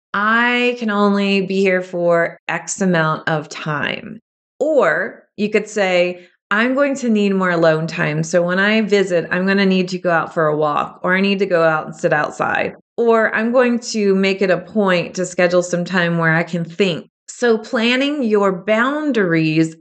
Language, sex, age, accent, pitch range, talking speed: English, female, 30-49, American, 175-220 Hz, 195 wpm